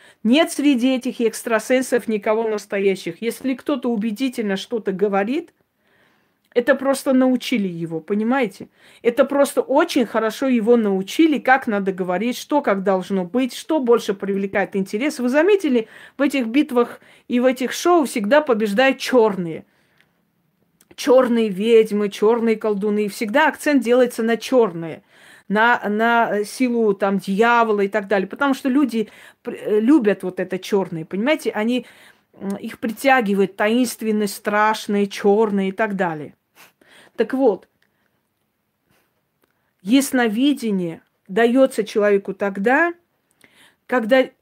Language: Russian